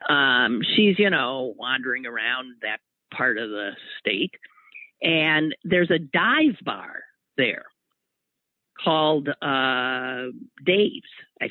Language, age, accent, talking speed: English, 50-69, American, 110 wpm